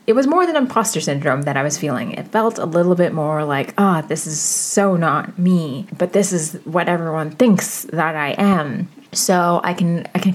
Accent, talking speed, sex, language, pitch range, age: American, 220 wpm, female, English, 155-195 Hz, 20-39